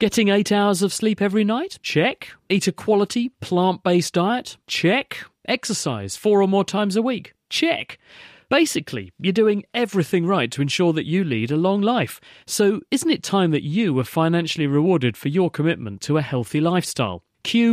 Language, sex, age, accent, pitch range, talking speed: English, male, 40-59, British, 130-200 Hz, 175 wpm